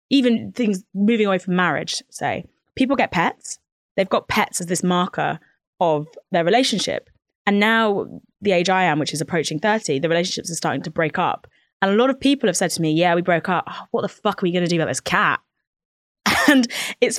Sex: female